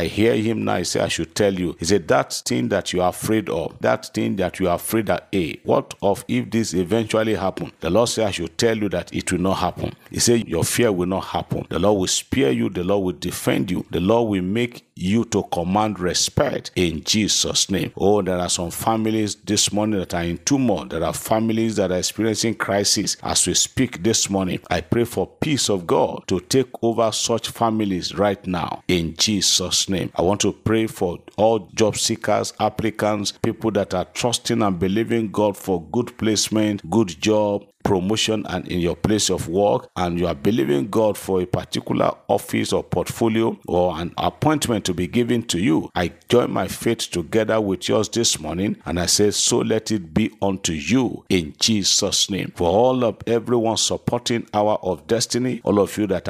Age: 50-69